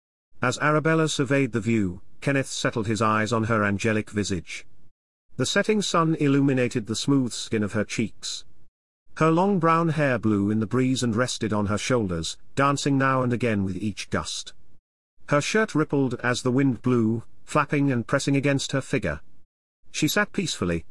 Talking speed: 170 wpm